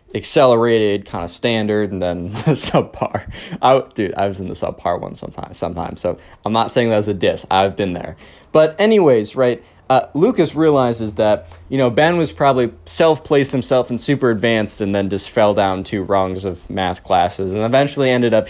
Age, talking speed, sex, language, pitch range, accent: 20-39, 195 wpm, male, English, 105-170 Hz, American